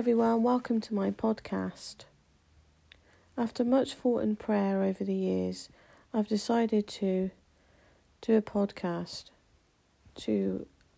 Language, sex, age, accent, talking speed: English, female, 40-59, British, 110 wpm